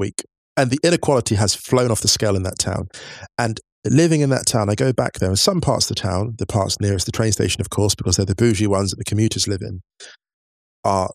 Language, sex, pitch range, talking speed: English, male, 95-120 Hz, 250 wpm